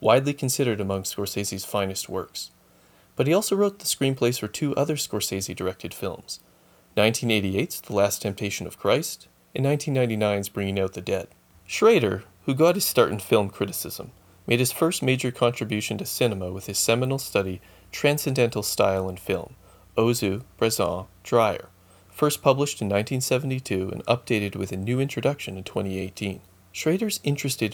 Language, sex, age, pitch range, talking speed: English, male, 30-49, 95-125 Hz, 150 wpm